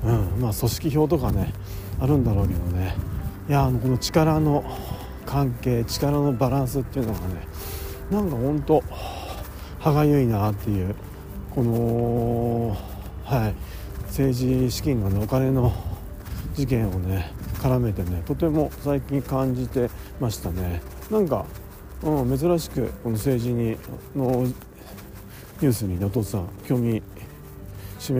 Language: Japanese